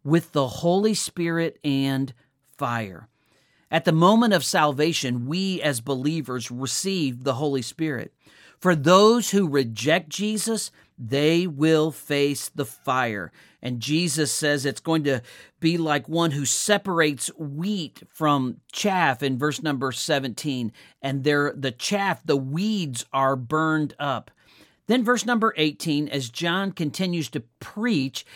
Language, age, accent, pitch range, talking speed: English, 50-69, American, 135-185 Hz, 135 wpm